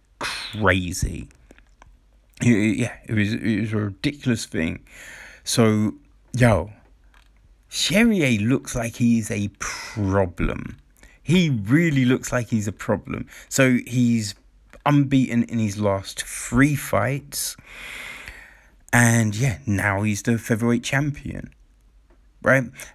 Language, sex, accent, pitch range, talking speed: English, male, British, 105-135 Hz, 105 wpm